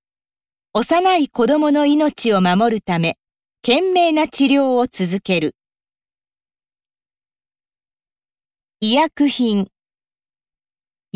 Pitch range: 185-300 Hz